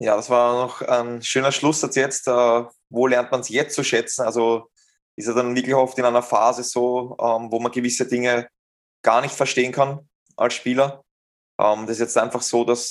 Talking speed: 190 wpm